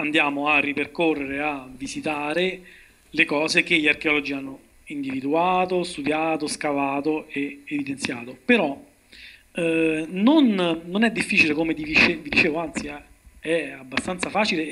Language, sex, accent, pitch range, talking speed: Italian, male, native, 150-195 Hz, 125 wpm